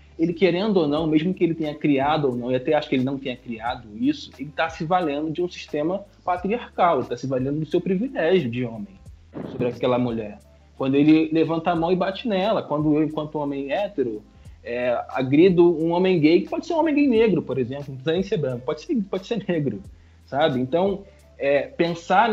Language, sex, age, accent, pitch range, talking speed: Portuguese, male, 20-39, Brazilian, 145-195 Hz, 205 wpm